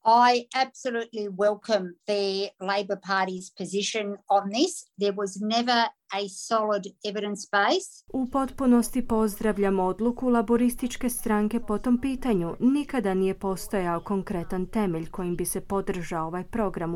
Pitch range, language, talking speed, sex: 185-235 Hz, Croatian, 125 wpm, female